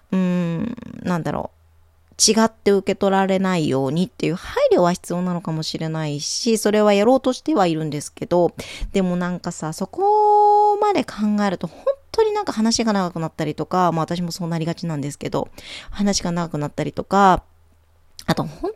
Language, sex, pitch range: Japanese, female, 160-230 Hz